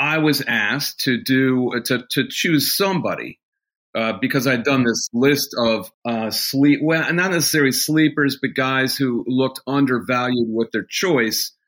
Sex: male